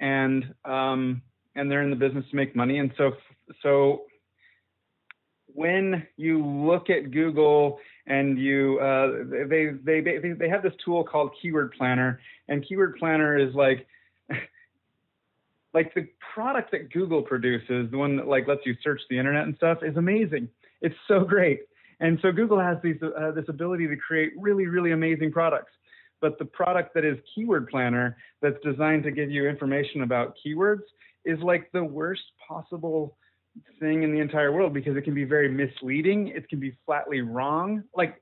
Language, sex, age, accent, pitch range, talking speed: English, male, 30-49, American, 140-180 Hz, 170 wpm